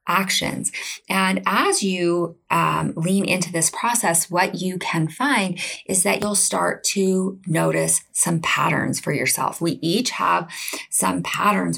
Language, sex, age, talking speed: English, female, 30-49, 145 wpm